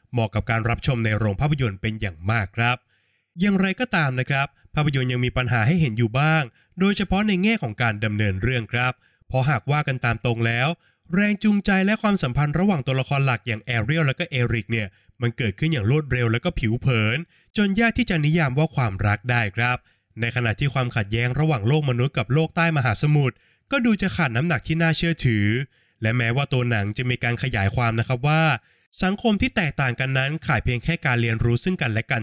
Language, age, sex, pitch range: Thai, 20-39, male, 115-155 Hz